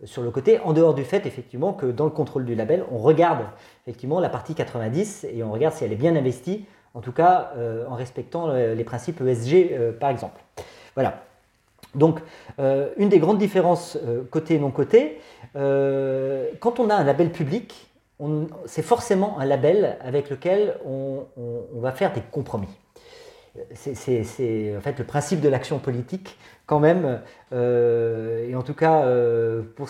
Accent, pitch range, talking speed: French, 125-185 Hz, 180 wpm